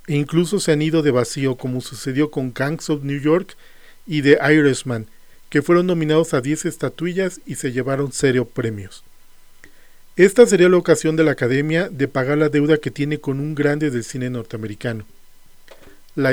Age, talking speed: 40-59, 175 wpm